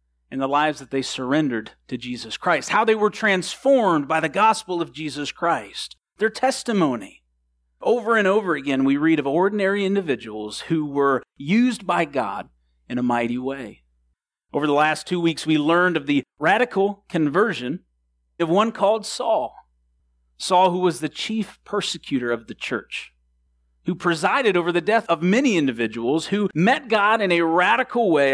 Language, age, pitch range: English, 40-59, 135-220 Hz